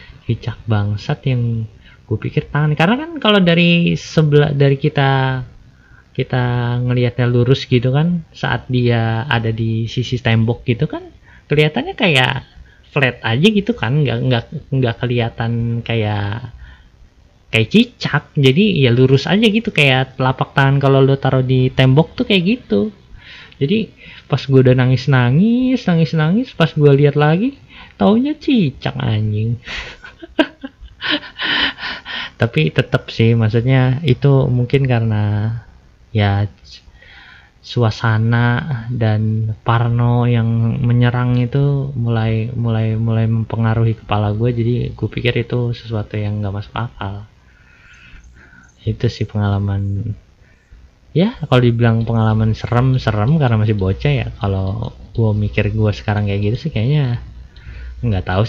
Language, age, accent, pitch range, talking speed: Indonesian, 20-39, native, 110-145 Hz, 125 wpm